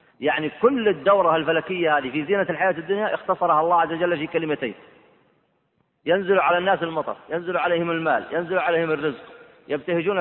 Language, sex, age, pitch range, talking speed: Arabic, male, 40-59, 155-195 Hz, 155 wpm